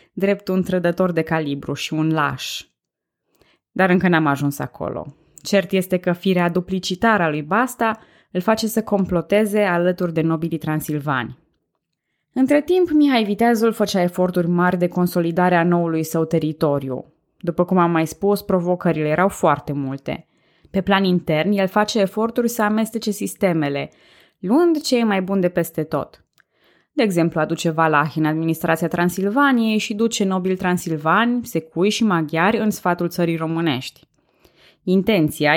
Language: Romanian